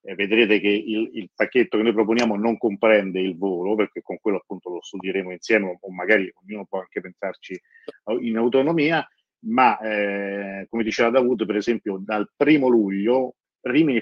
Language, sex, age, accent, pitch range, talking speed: Italian, male, 40-59, native, 100-120 Hz, 165 wpm